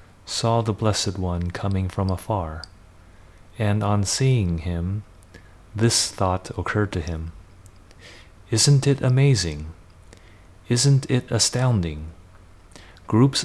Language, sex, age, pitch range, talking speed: English, male, 30-49, 90-115 Hz, 105 wpm